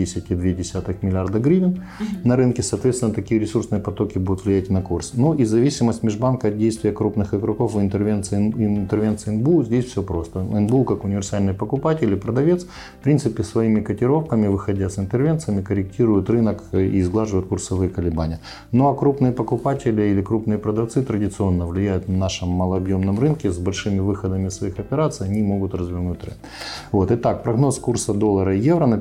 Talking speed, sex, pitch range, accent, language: 160 wpm, male, 95-115 Hz, native, Ukrainian